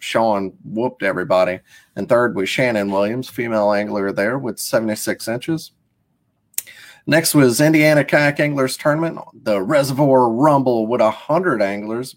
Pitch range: 105-130 Hz